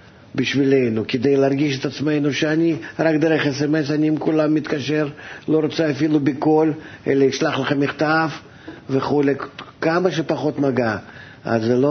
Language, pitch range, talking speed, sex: Hebrew, 125-155 Hz, 140 wpm, male